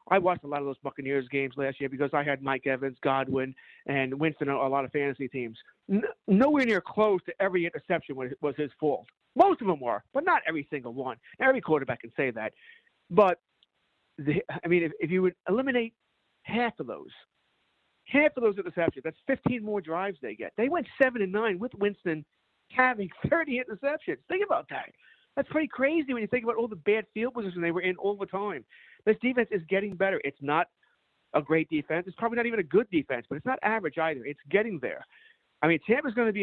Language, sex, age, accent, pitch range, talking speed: English, male, 50-69, American, 150-220 Hz, 215 wpm